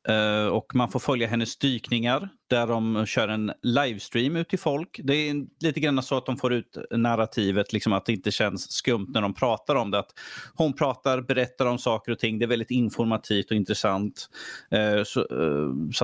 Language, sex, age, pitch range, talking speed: Swedish, male, 30-49, 105-130 Hz, 180 wpm